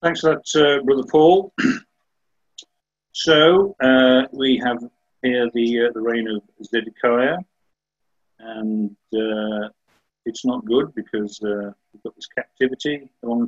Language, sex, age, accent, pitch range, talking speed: English, male, 50-69, British, 110-130 Hz, 130 wpm